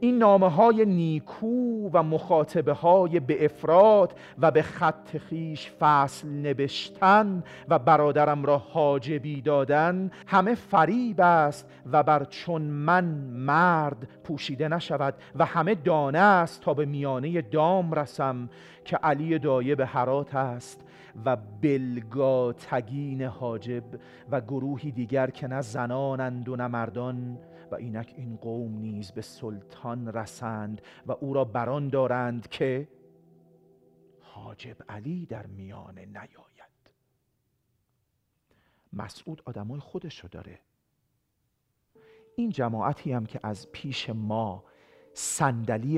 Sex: male